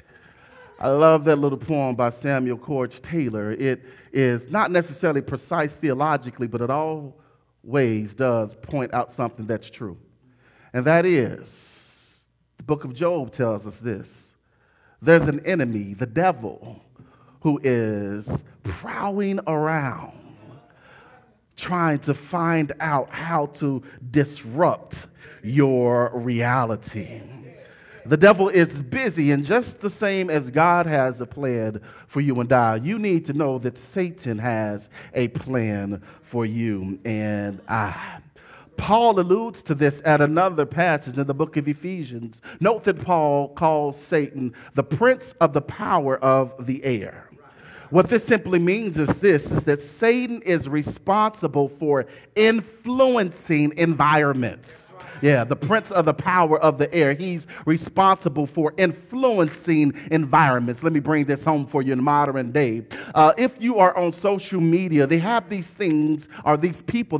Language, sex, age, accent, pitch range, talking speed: English, male, 40-59, American, 130-170 Hz, 145 wpm